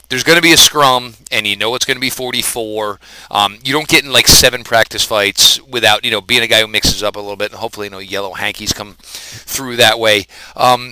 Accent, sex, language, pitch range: American, male, English, 95-125 Hz